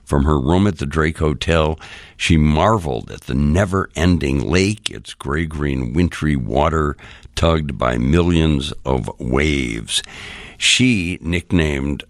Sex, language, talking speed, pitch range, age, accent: male, English, 120 wpm, 75-100 Hz, 60-79, American